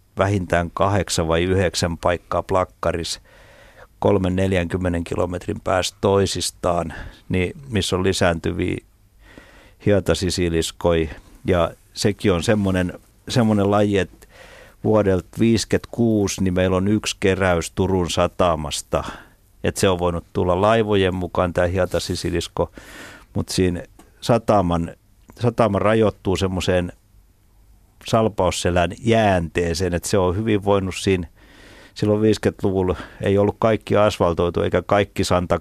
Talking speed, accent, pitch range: 110 wpm, native, 90-105 Hz